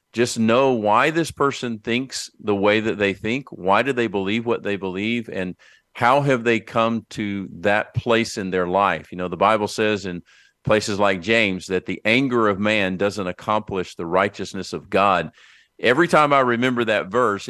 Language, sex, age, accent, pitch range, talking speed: English, male, 50-69, American, 100-120 Hz, 190 wpm